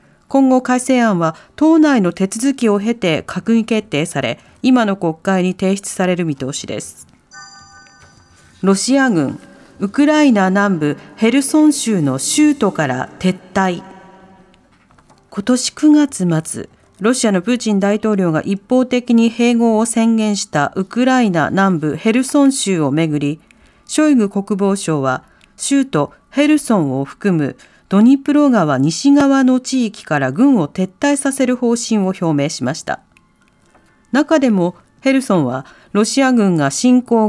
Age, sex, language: 40-59, female, Japanese